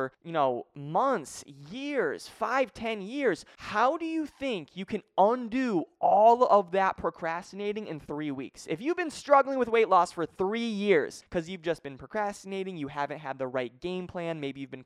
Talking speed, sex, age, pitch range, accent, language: 185 wpm, male, 20-39, 155-240 Hz, American, English